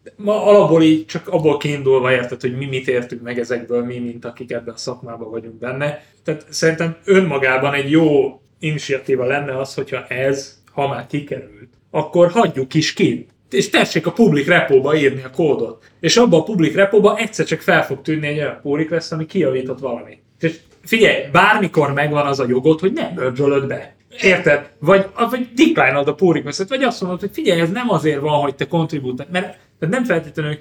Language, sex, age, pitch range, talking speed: Hungarian, male, 30-49, 130-180 Hz, 190 wpm